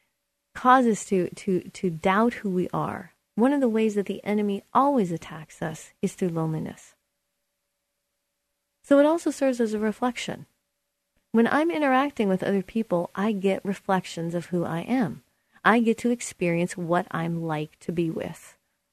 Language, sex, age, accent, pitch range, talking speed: English, female, 30-49, American, 180-235 Hz, 160 wpm